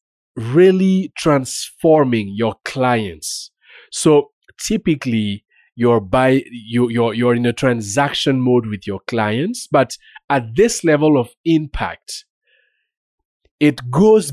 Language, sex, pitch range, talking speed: English, male, 110-145 Hz, 110 wpm